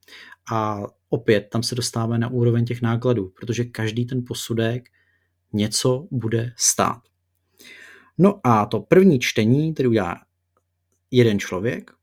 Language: Czech